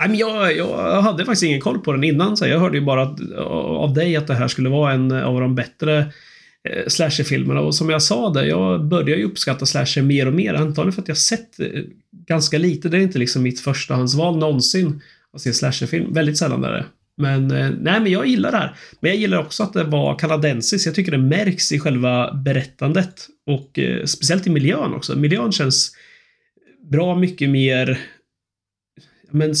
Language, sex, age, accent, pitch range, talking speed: Swedish, male, 30-49, native, 130-165 Hz, 190 wpm